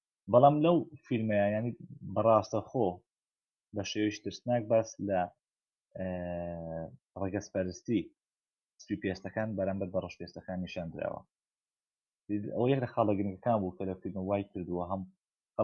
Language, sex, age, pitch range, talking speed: Arabic, male, 30-49, 95-110 Hz, 60 wpm